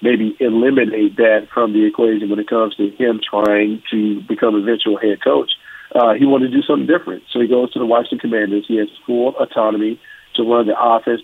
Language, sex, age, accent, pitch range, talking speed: English, male, 50-69, American, 110-130 Hz, 210 wpm